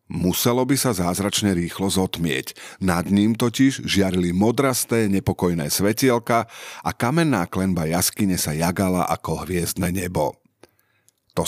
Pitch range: 90-115 Hz